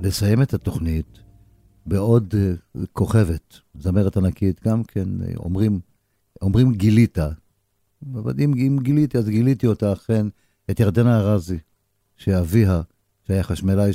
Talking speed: 110 wpm